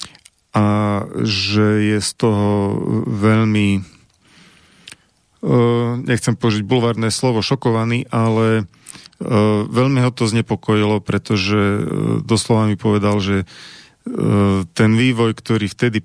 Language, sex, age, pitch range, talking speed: Slovak, male, 40-59, 100-115 Hz, 110 wpm